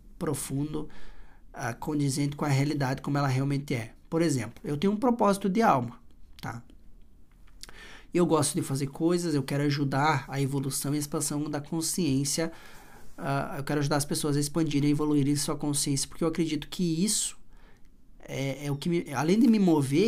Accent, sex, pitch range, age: Brazilian, male, 140-165 Hz, 20-39